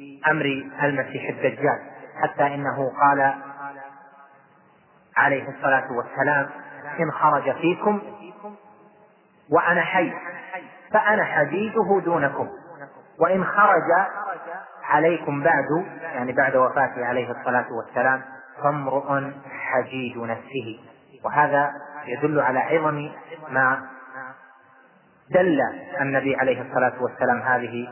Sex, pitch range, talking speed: male, 125-145 Hz, 90 wpm